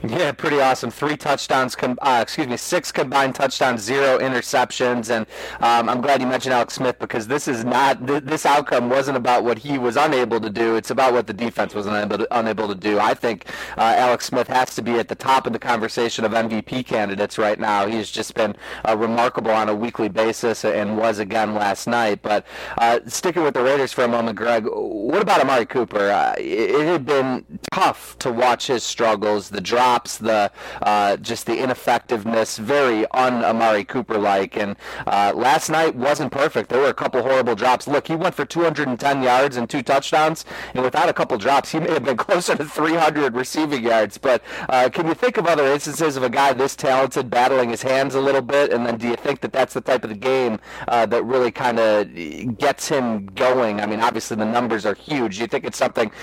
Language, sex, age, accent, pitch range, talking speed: English, male, 30-49, American, 110-135 Hz, 215 wpm